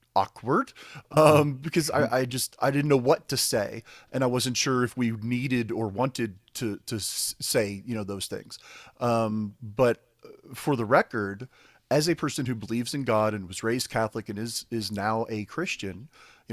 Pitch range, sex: 110-140 Hz, male